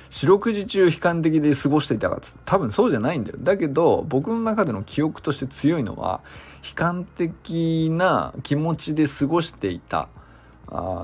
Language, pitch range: Japanese, 110-160 Hz